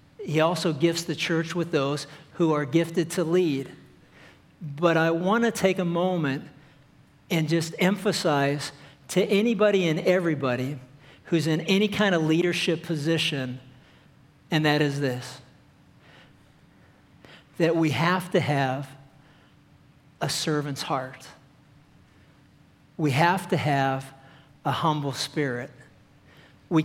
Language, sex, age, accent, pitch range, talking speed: English, male, 50-69, American, 145-175 Hz, 120 wpm